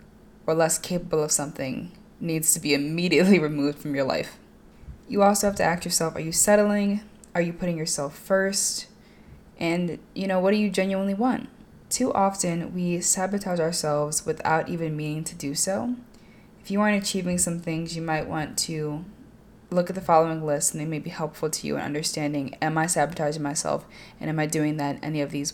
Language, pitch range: English, 150-185 Hz